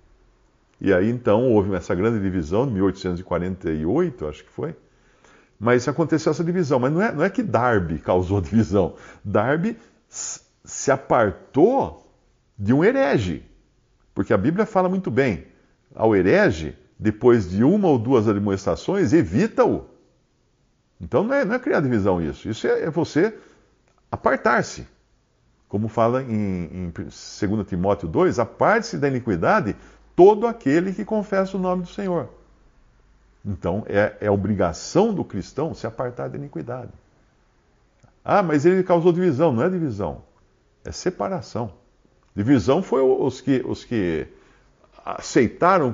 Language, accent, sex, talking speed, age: Portuguese, Brazilian, male, 130 wpm, 50-69